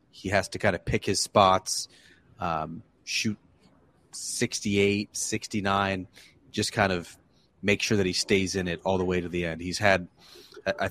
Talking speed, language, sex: 170 wpm, English, male